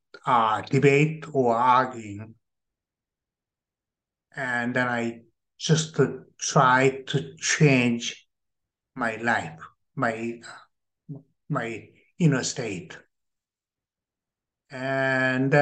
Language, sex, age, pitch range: Chinese, male, 60-79, 130-205 Hz